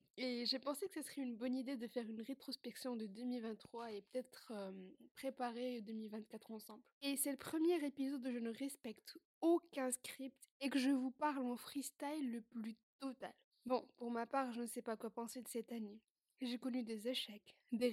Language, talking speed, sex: French, 200 wpm, female